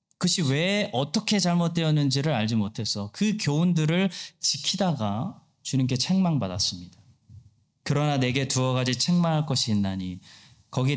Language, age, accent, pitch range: Korean, 20-39, native, 110-160 Hz